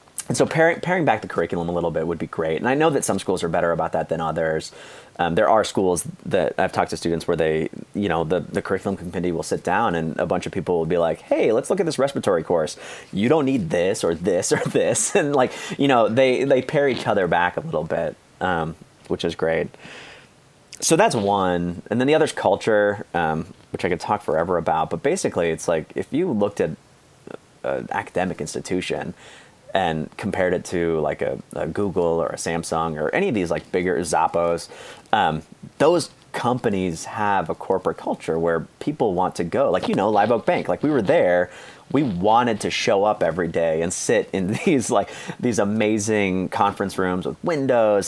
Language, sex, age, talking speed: English, male, 30-49, 215 wpm